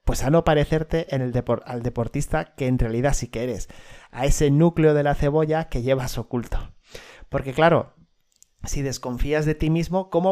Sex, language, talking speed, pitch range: male, Spanish, 185 wpm, 125-170 Hz